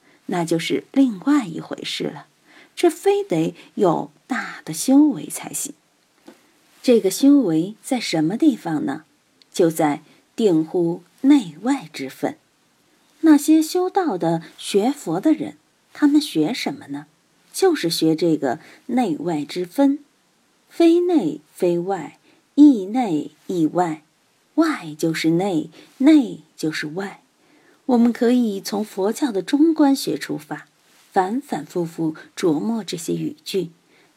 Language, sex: Chinese, female